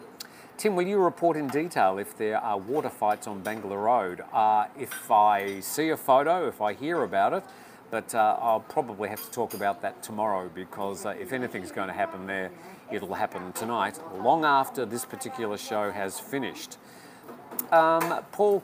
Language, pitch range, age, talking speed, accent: English, 100-145 Hz, 50-69, 175 wpm, Australian